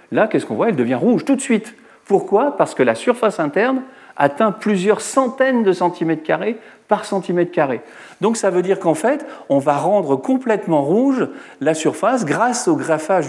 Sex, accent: male, French